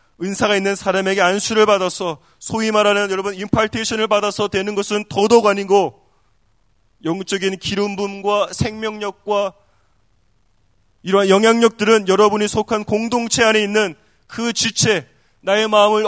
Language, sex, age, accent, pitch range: Korean, male, 20-39, native, 185-220 Hz